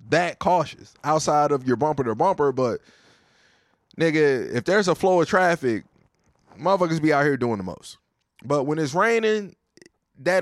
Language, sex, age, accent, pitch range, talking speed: English, male, 20-39, American, 125-205 Hz, 160 wpm